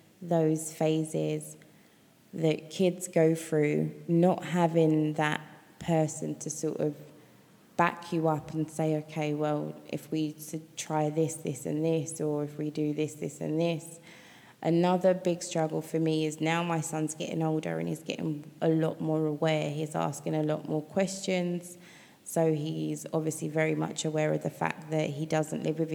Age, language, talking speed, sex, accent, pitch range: 20-39, English, 170 wpm, female, British, 155-170 Hz